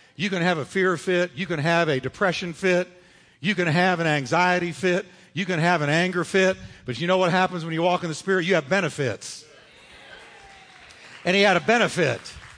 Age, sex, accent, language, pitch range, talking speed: 50-69, male, American, English, 150-195 Hz, 205 wpm